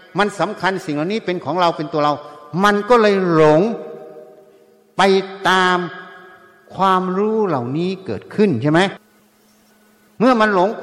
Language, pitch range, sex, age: Thai, 150-205 Hz, male, 60-79